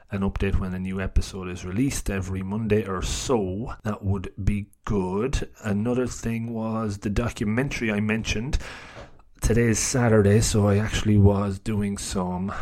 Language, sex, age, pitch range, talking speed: English, male, 30-49, 95-110 Hz, 150 wpm